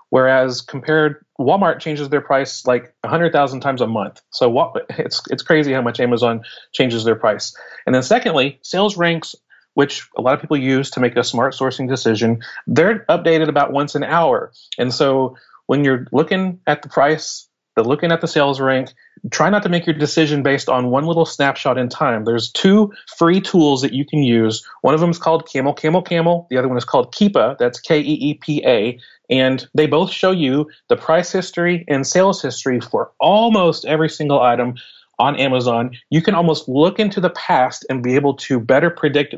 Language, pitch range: English, 125-165 Hz